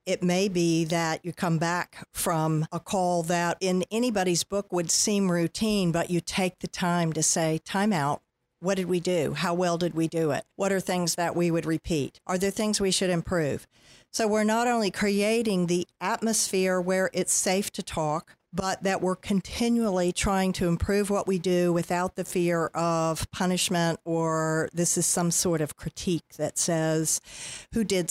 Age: 50-69